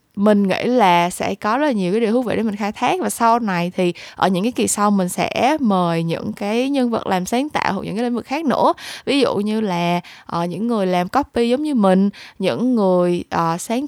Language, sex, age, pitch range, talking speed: Vietnamese, female, 20-39, 185-245 Hz, 250 wpm